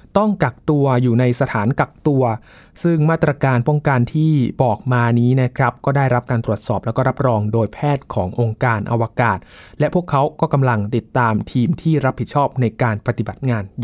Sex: male